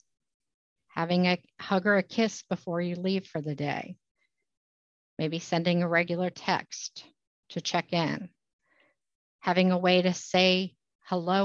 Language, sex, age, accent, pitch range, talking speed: English, female, 50-69, American, 160-205 Hz, 135 wpm